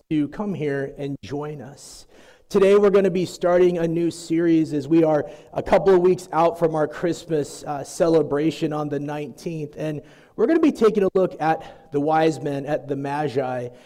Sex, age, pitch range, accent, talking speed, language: male, 30-49, 145-170 Hz, American, 200 wpm, English